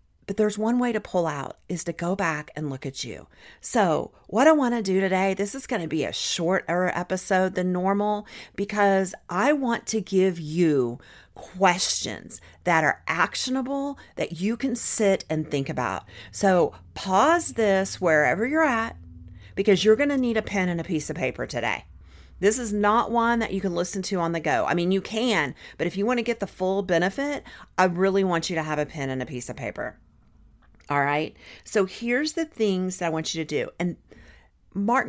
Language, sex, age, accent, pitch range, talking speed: English, female, 40-59, American, 155-210 Hz, 205 wpm